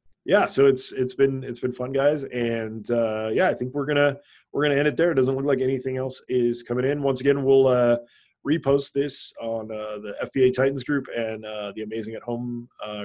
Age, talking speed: 20-39, 235 wpm